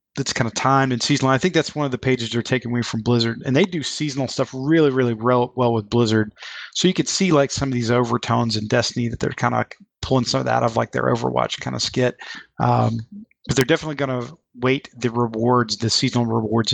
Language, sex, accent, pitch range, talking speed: English, male, American, 120-140 Hz, 240 wpm